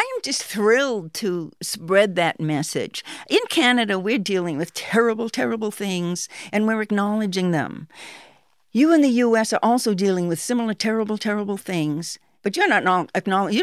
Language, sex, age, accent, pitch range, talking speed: English, female, 60-79, American, 195-245 Hz, 160 wpm